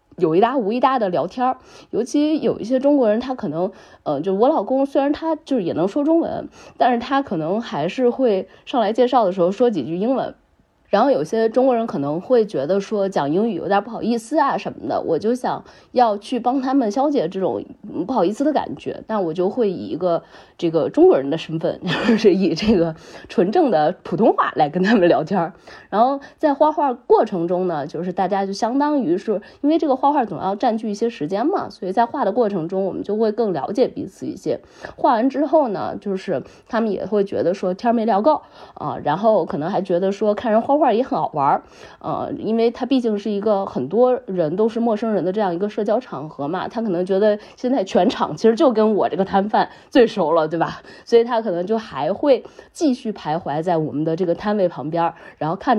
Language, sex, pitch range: Chinese, female, 185-255 Hz